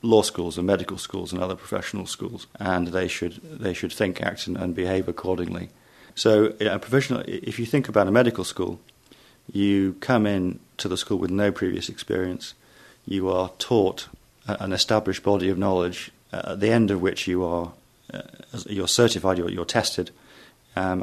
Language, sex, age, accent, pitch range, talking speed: English, male, 40-59, British, 90-105 Hz, 180 wpm